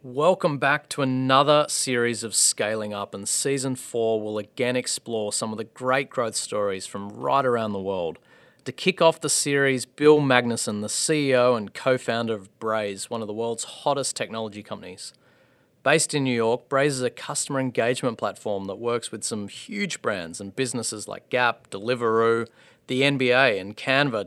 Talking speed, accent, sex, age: 175 wpm, Australian, male, 30-49